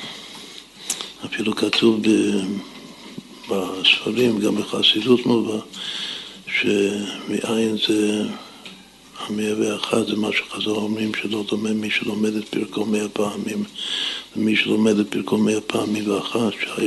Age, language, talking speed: 60-79, Hebrew, 105 wpm